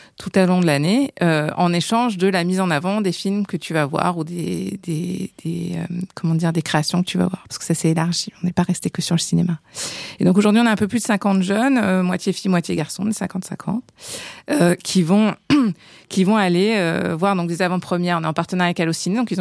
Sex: female